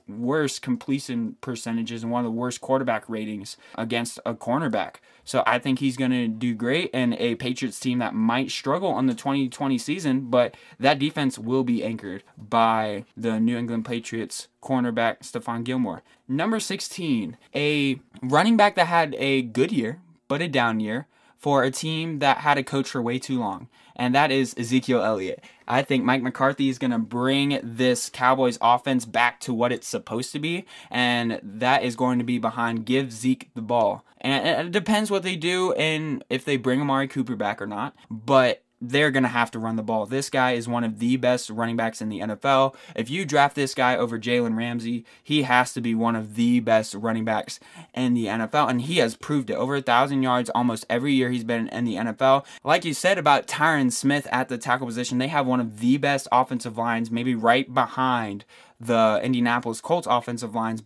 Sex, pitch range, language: male, 115-135 Hz, English